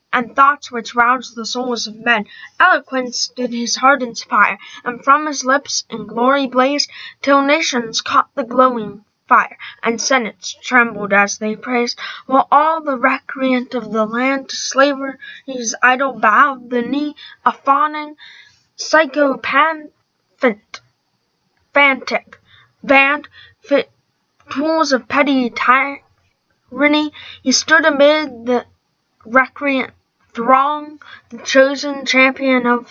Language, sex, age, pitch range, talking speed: English, female, 10-29, 245-285 Hz, 120 wpm